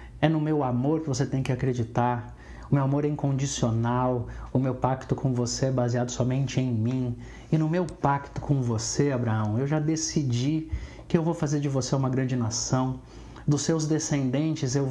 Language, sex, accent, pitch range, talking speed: Portuguese, male, Brazilian, 125-155 Hz, 190 wpm